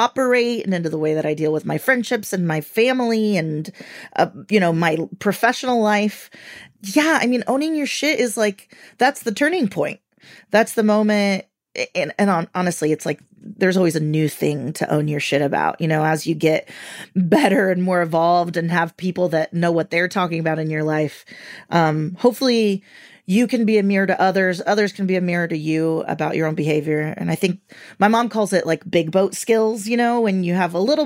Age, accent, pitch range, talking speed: 30-49, American, 165-210 Hz, 215 wpm